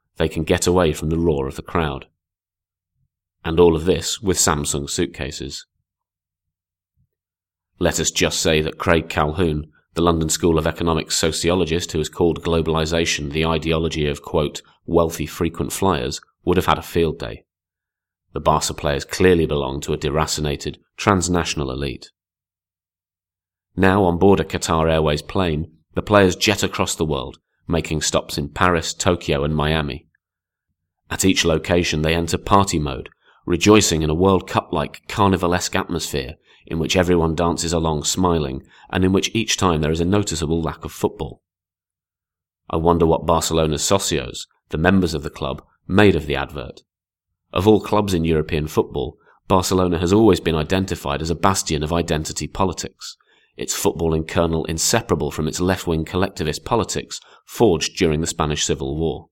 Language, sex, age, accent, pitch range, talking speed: English, male, 30-49, British, 80-90 Hz, 155 wpm